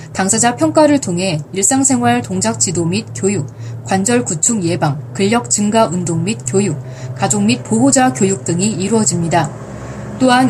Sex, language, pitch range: female, Korean, 165-240 Hz